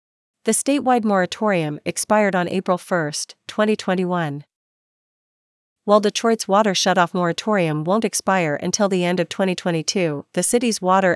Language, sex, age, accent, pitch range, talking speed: English, female, 40-59, American, 165-200 Hz, 125 wpm